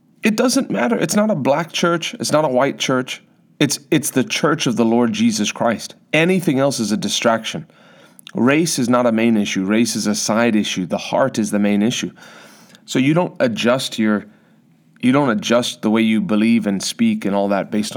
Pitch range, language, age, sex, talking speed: 105-130 Hz, English, 30-49, male, 205 wpm